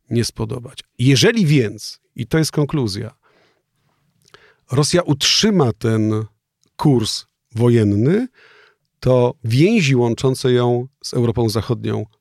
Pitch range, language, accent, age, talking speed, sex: 110-135 Hz, Polish, native, 40-59, 100 wpm, male